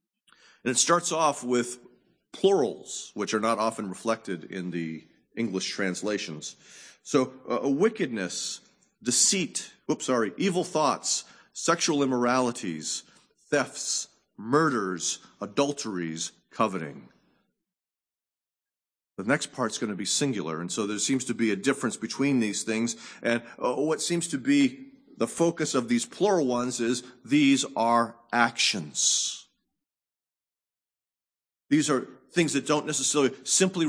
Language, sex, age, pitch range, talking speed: English, male, 40-59, 120-180 Hz, 125 wpm